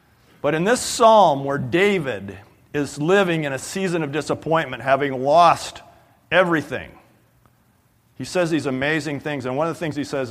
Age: 40-59